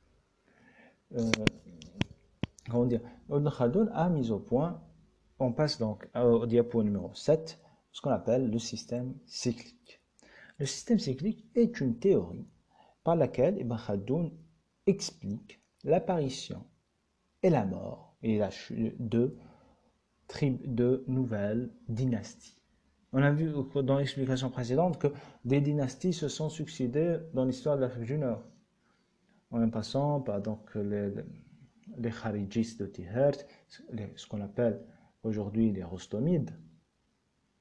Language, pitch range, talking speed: Arabic, 110-140 Hz, 120 wpm